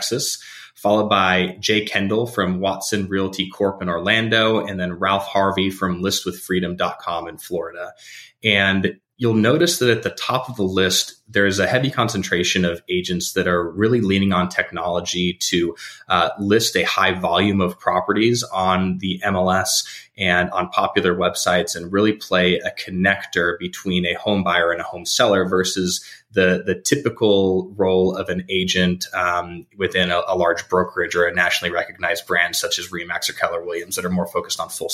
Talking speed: 175 wpm